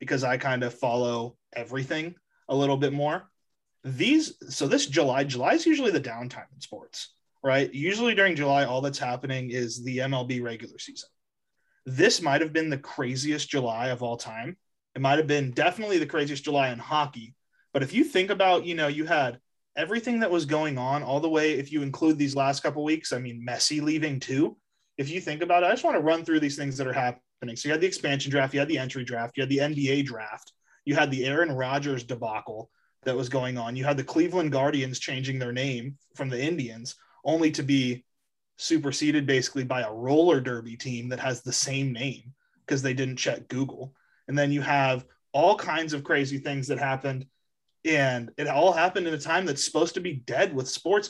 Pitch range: 130-155 Hz